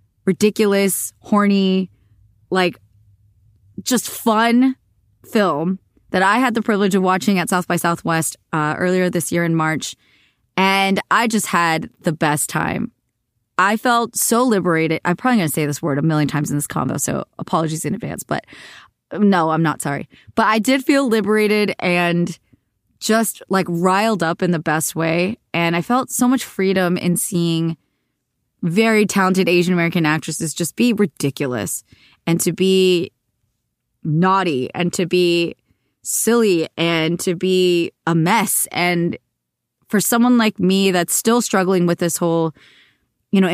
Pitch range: 165-200 Hz